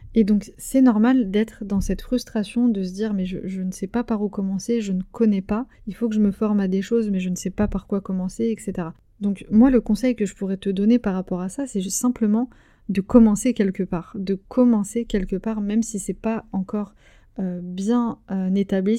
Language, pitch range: French, 195-220 Hz